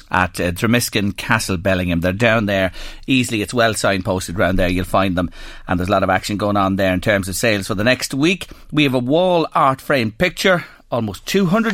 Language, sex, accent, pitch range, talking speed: English, male, Irish, 105-150 Hz, 220 wpm